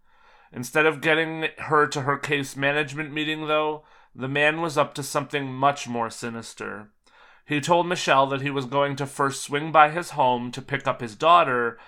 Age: 30-49